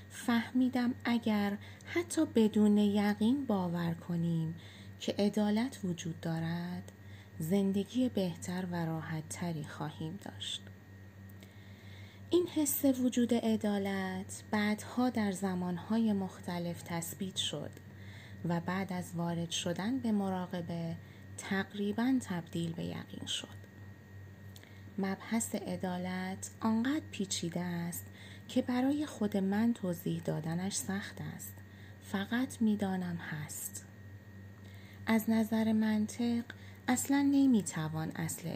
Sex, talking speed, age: female, 95 wpm, 20-39